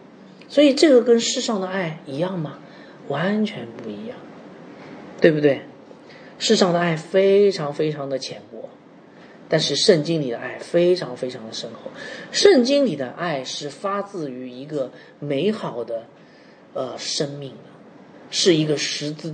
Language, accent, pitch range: Chinese, native, 135-180 Hz